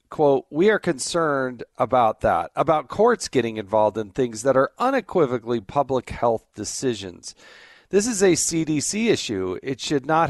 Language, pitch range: English, 115-145 Hz